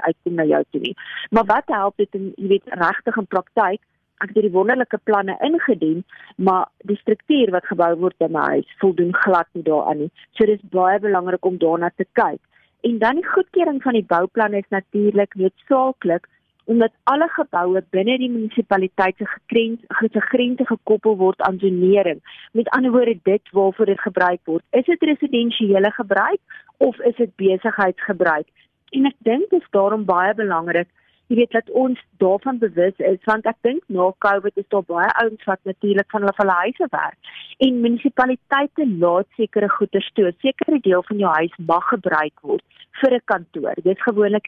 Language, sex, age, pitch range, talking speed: Dutch, female, 40-59, 185-235 Hz, 180 wpm